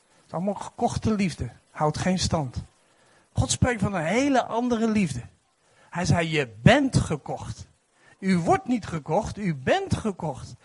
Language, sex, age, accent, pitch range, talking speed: Dutch, male, 50-69, Dutch, 145-215 Hz, 140 wpm